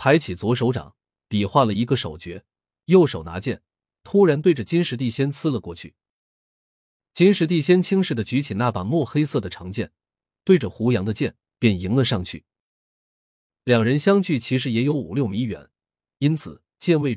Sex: male